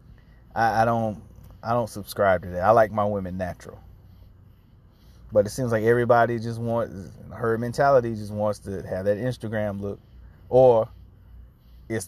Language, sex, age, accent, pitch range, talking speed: English, male, 30-49, American, 95-120 Hz, 150 wpm